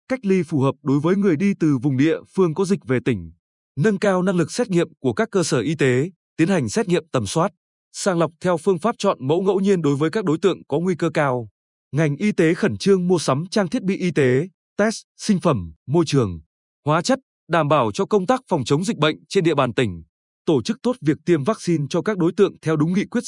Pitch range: 145-200 Hz